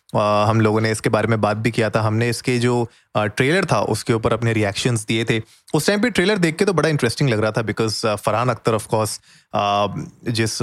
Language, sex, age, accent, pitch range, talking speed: Hindi, male, 30-49, native, 110-135 Hz, 230 wpm